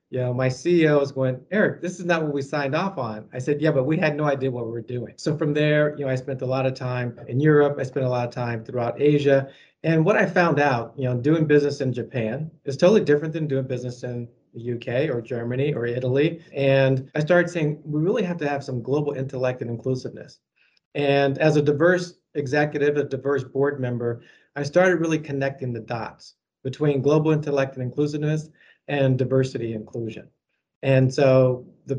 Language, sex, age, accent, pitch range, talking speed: English, male, 40-59, American, 130-150 Hz, 210 wpm